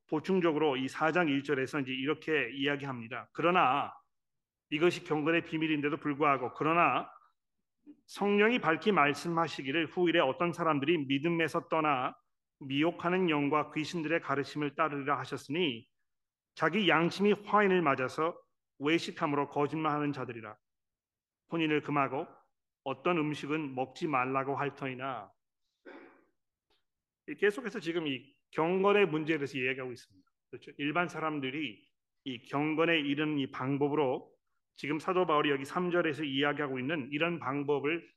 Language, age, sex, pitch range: Korean, 40-59, male, 140-175 Hz